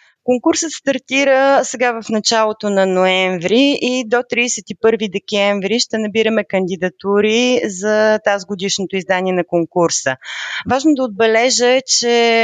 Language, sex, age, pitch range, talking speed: Bulgarian, female, 30-49, 180-235 Hz, 115 wpm